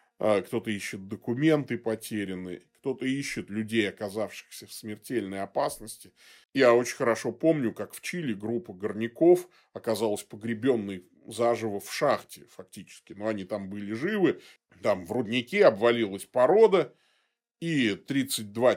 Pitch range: 100-140 Hz